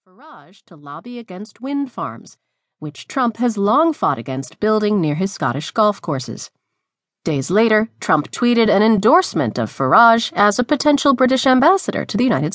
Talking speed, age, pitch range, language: 165 wpm, 30-49, 165-260 Hz, English